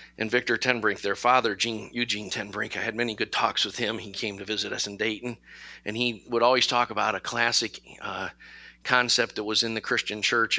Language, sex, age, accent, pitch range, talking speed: English, male, 50-69, American, 110-155 Hz, 210 wpm